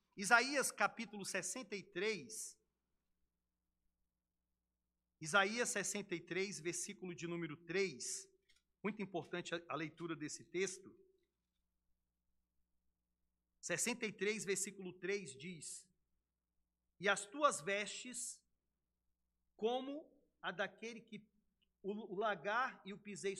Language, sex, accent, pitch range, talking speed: Portuguese, male, Brazilian, 155-225 Hz, 85 wpm